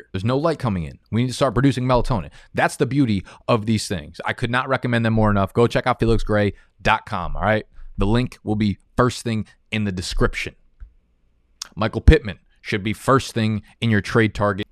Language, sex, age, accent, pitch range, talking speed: English, male, 20-39, American, 100-120 Hz, 200 wpm